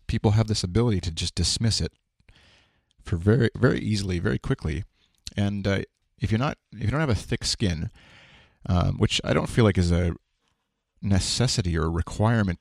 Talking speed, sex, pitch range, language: 180 wpm, male, 80-100 Hz, English